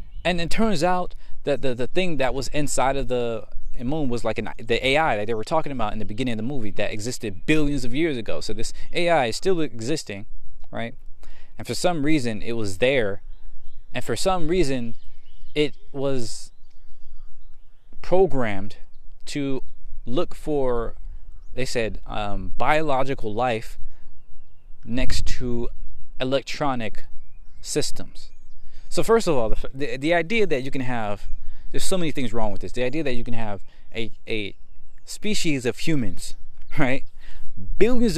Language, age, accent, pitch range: English, 20-39, American, 85-135 Hz